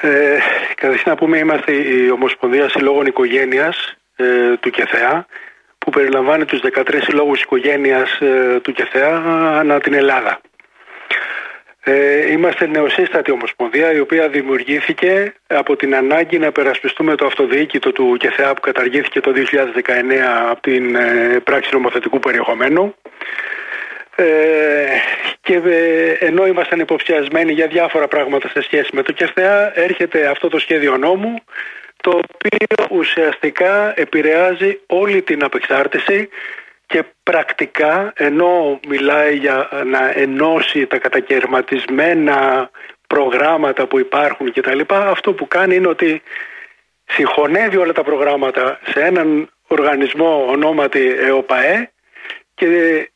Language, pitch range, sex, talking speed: Greek, 140-185 Hz, male, 120 wpm